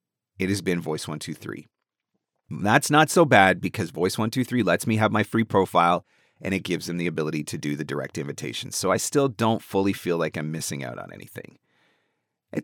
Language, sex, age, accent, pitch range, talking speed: English, male, 30-49, American, 100-140 Hz, 190 wpm